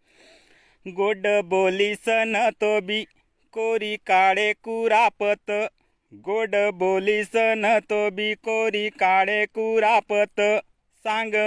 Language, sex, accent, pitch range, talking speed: Marathi, male, native, 205-220 Hz, 80 wpm